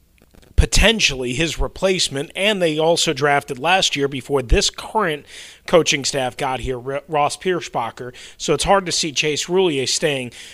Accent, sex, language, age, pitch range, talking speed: American, male, English, 30-49, 140-170 Hz, 150 wpm